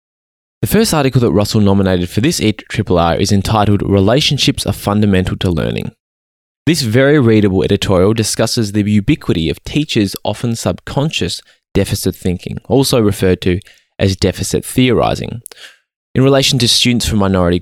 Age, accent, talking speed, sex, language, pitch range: 20-39, Australian, 140 wpm, male, English, 95-135 Hz